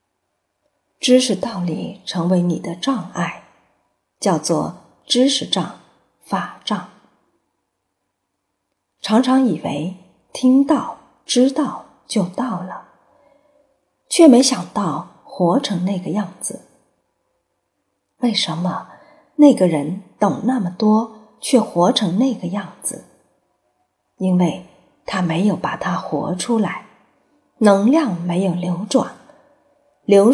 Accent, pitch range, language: native, 180-255 Hz, Chinese